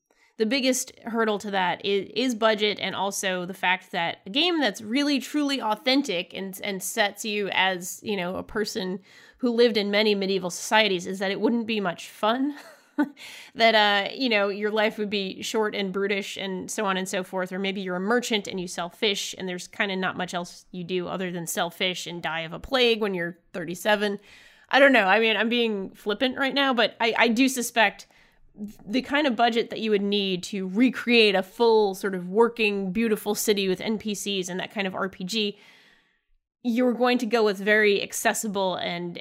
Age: 20-39